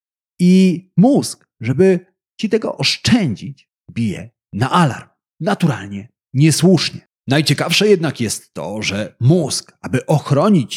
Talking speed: 105 wpm